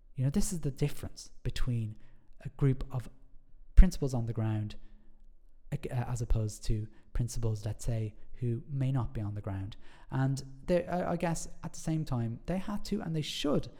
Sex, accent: male, British